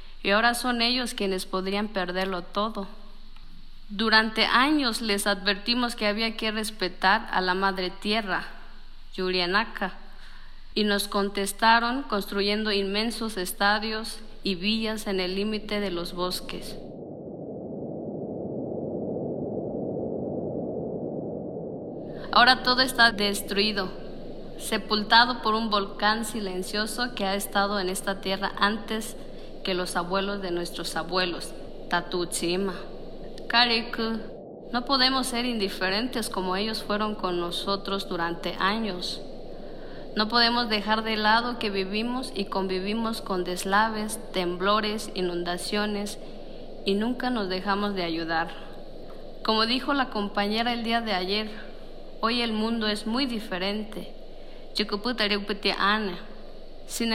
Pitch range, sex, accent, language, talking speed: 195-225 Hz, female, Mexican, Spanish, 110 wpm